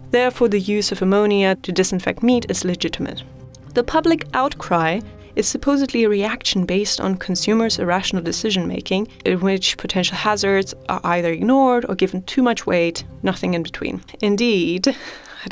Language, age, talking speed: English, 20-39, 155 wpm